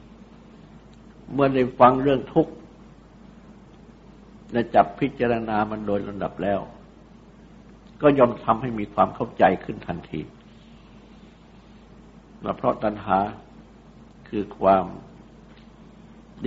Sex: male